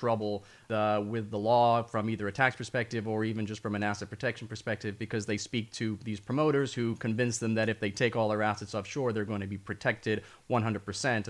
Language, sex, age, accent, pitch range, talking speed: English, male, 30-49, American, 105-120 Hz, 220 wpm